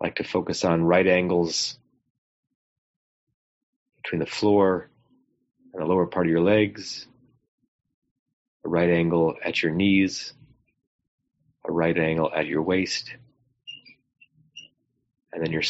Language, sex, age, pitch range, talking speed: English, male, 30-49, 85-125 Hz, 120 wpm